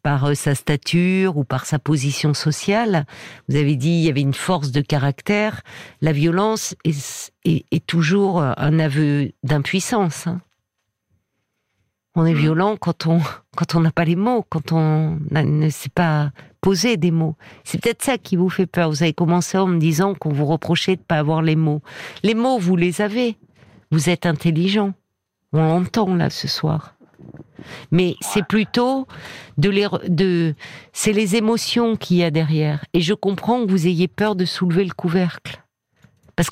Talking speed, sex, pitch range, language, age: 175 wpm, female, 155-195 Hz, French, 50-69